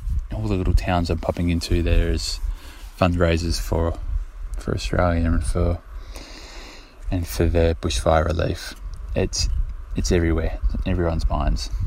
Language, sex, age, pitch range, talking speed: English, male, 20-39, 80-95 Hz, 130 wpm